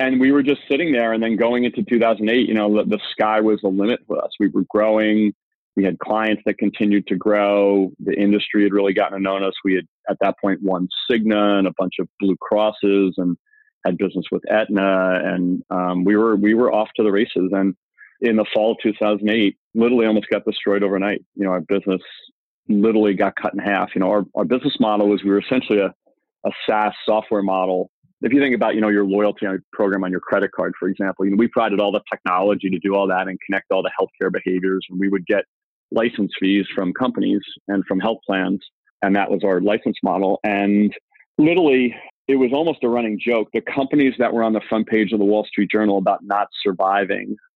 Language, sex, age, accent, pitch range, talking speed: English, male, 40-59, American, 95-110 Hz, 220 wpm